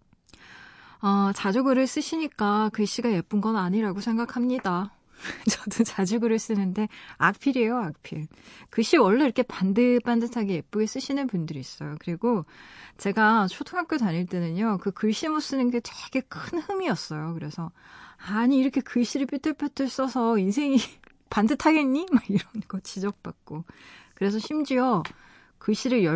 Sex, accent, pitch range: female, native, 185-240 Hz